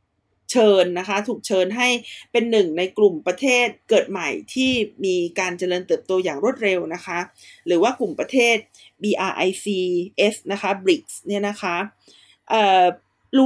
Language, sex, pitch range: Thai, female, 185-240 Hz